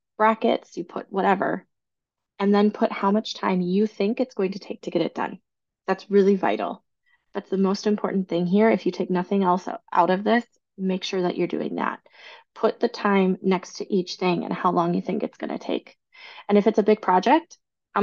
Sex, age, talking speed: female, 20-39, 220 wpm